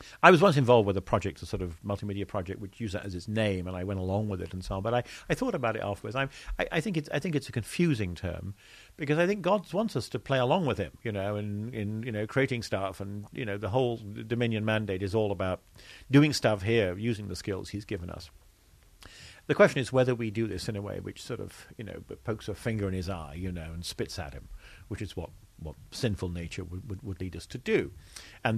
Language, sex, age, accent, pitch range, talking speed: English, male, 50-69, British, 95-130 Hz, 260 wpm